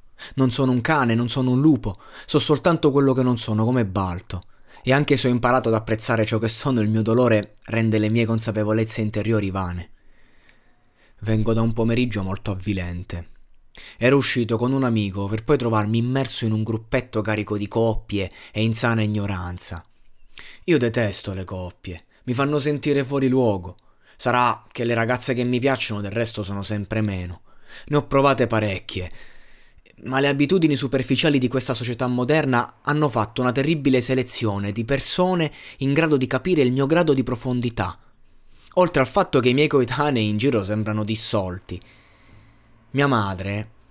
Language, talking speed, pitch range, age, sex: Italian, 165 wpm, 105-130 Hz, 20-39, male